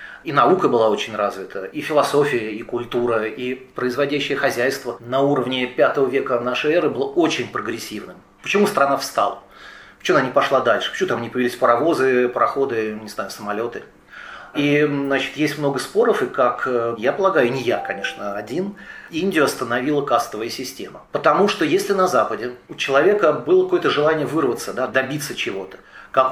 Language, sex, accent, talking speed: Russian, male, native, 155 wpm